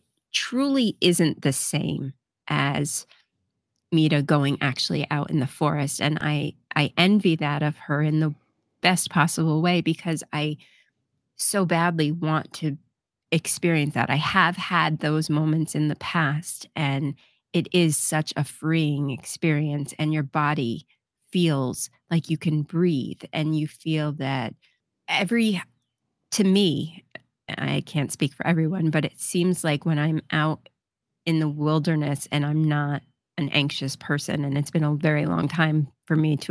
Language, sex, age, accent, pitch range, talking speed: English, female, 30-49, American, 145-160 Hz, 155 wpm